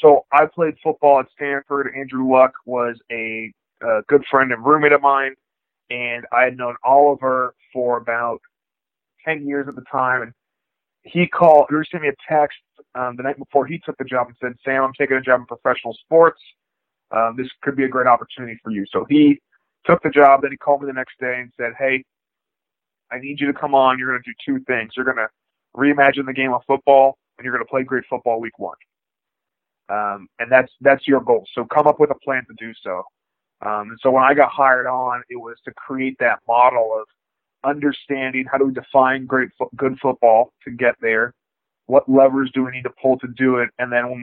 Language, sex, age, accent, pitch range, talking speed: English, male, 30-49, American, 120-140 Hz, 220 wpm